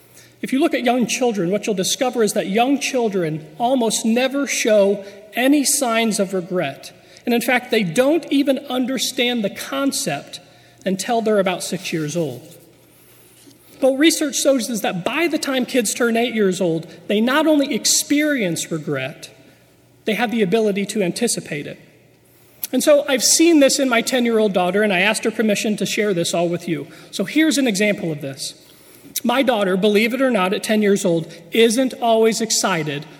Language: English